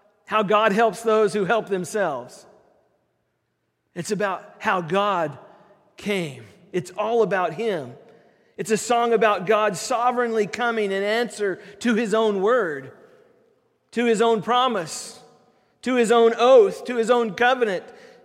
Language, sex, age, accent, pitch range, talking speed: English, male, 40-59, American, 185-260 Hz, 135 wpm